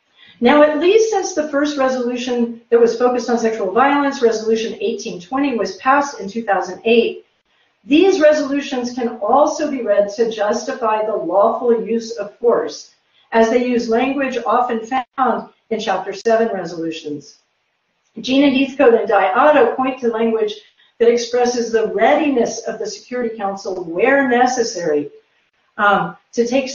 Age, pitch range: 50-69, 195-265 Hz